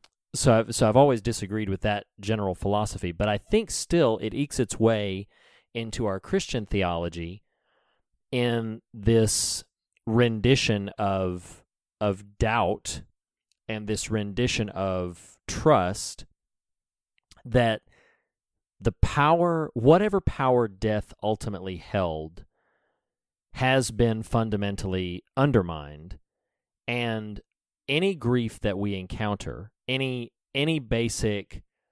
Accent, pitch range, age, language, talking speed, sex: American, 95-115 Hz, 40-59, English, 100 wpm, male